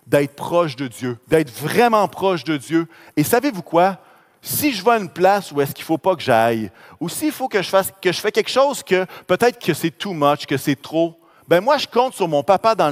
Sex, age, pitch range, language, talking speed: male, 40-59, 130-190 Hz, French, 245 wpm